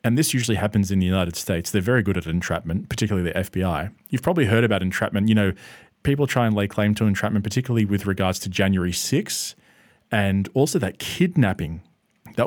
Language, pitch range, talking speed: English, 100-135 Hz, 195 wpm